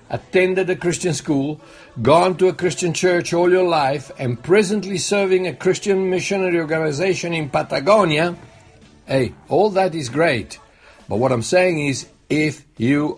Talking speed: 150 wpm